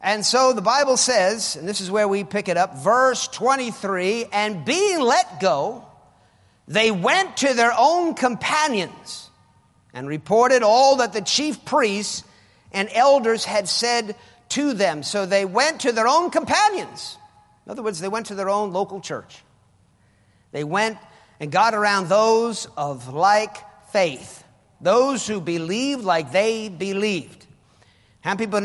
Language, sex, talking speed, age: English, male, 155 wpm, 50-69